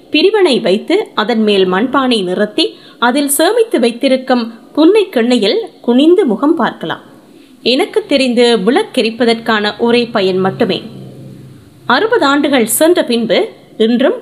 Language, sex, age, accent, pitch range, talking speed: Tamil, female, 20-39, native, 230-315 Hz, 105 wpm